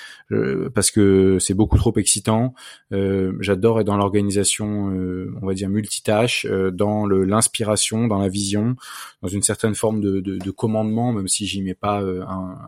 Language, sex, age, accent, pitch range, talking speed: French, male, 20-39, French, 95-115 Hz, 175 wpm